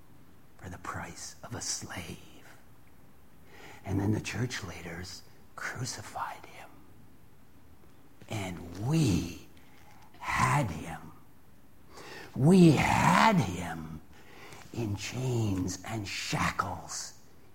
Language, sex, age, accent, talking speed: English, male, 60-79, American, 80 wpm